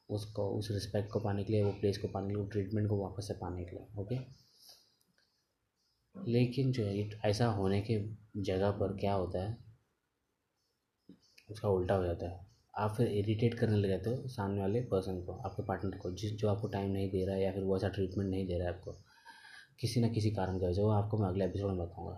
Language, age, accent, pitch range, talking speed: Hindi, 20-39, native, 95-110 Hz, 215 wpm